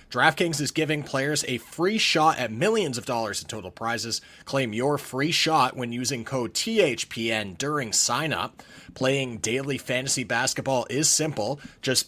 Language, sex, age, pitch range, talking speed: English, male, 30-49, 125-150 Hz, 155 wpm